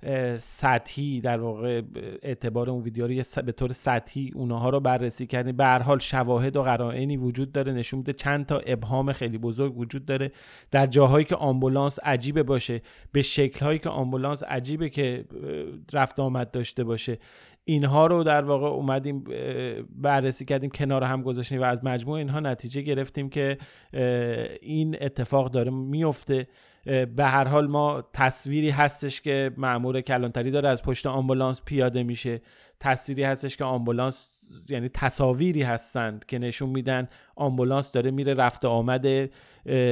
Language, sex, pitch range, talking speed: Persian, male, 125-140 Hz, 145 wpm